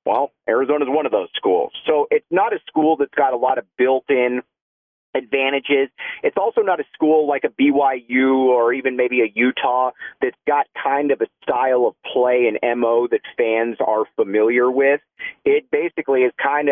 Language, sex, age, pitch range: English, male, 40-59, 125-160 Hz